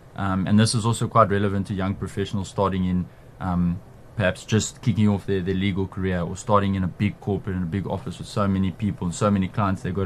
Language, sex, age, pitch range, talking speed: English, male, 20-39, 95-120 Hz, 245 wpm